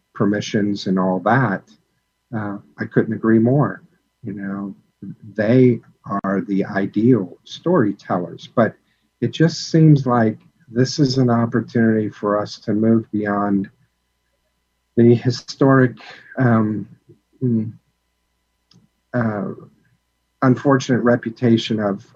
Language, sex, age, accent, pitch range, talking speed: English, male, 50-69, American, 100-120 Hz, 100 wpm